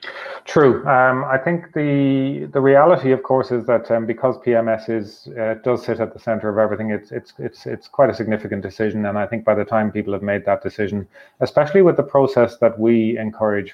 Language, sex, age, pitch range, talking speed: English, male, 30-49, 100-115 Hz, 215 wpm